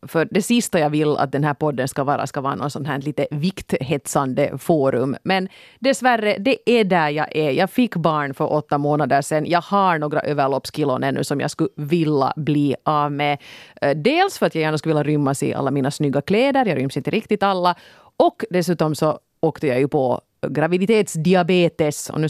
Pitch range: 145-190 Hz